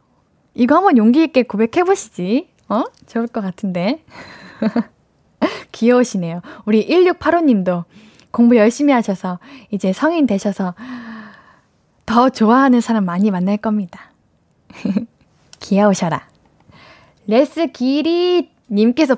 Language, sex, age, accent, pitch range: Korean, female, 10-29, native, 205-265 Hz